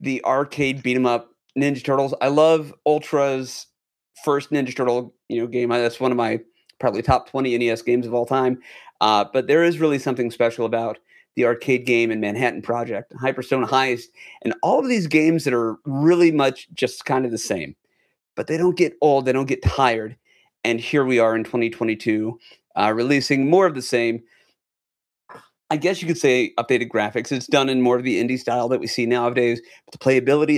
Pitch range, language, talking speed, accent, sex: 115-140 Hz, English, 195 wpm, American, male